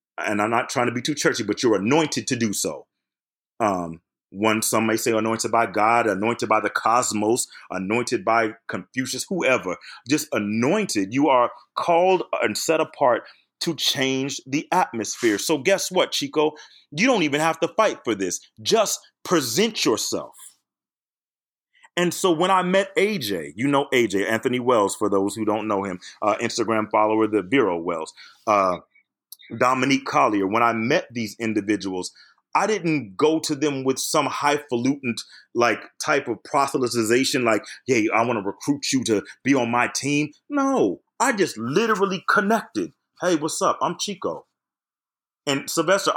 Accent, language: American, English